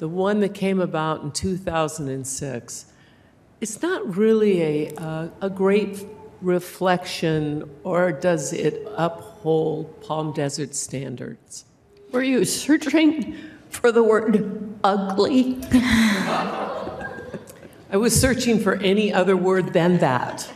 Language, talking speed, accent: English, 110 wpm, American